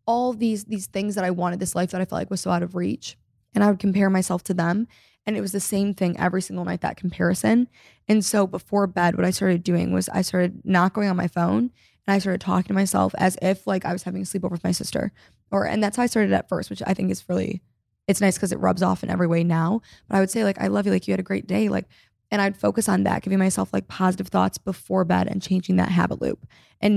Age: 20-39